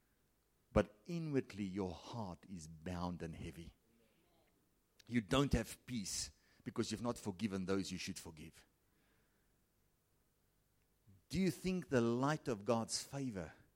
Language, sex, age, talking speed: English, male, 50-69, 120 wpm